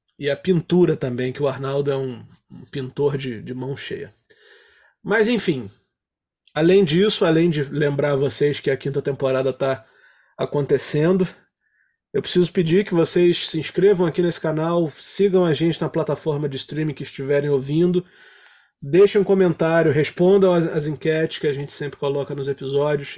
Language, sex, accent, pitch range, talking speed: Portuguese, male, Brazilian, 145-195 Hz, 165 wpm